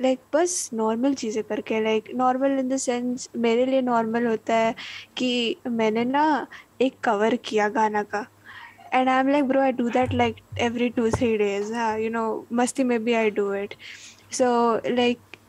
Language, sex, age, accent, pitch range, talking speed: English, female, 10-29, Indian, 220-260 Hz, 145 wpm